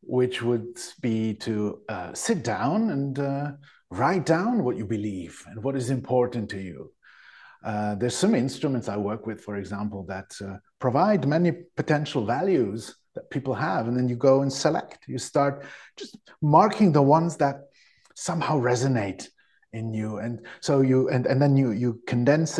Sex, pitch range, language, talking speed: male, 115-145 Hz, English, 170 wpm